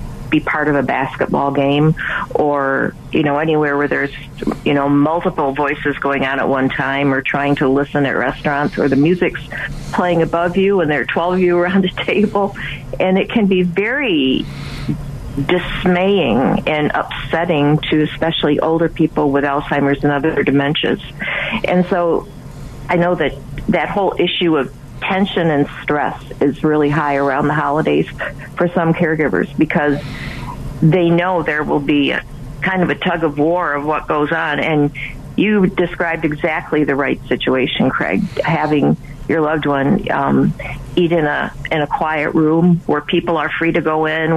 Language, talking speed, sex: English, 170 wpm, female